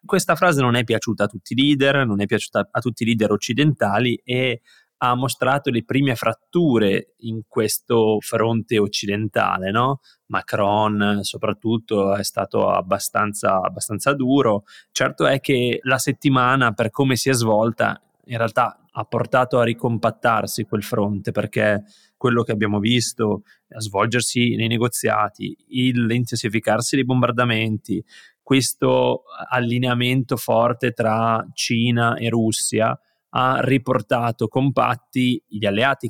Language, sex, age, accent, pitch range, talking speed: Italian, male, 20-39, native, 110-125 Hz, 125 wpm